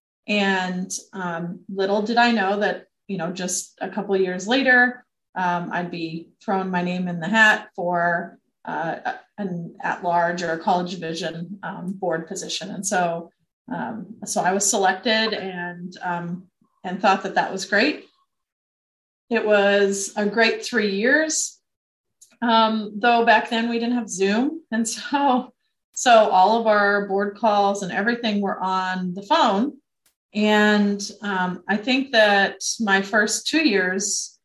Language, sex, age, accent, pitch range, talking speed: English, female, 30-49, American, 180-220 Hz, 150 wpm